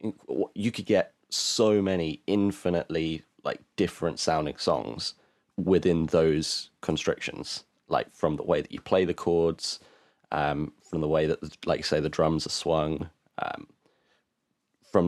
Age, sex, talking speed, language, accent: 30-49, male, 140 wpm, English, British